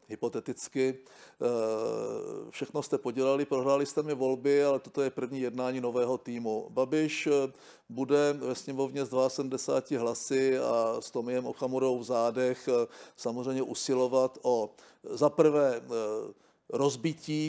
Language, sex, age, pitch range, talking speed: Czech, male, 50-69, 125-150 Hz, 115 wpm